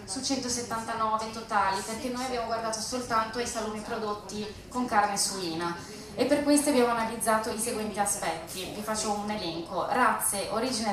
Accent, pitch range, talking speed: native, 205-240 Hz, 155 wpm